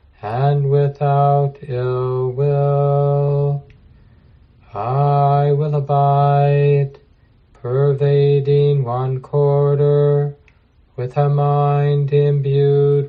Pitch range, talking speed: 140-145 Hz, 65 wpm